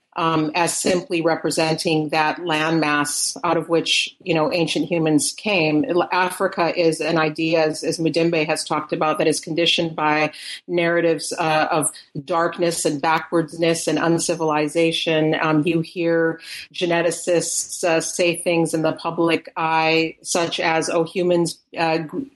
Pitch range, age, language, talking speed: 155-170 Hz, 40-59, English, 140 wpm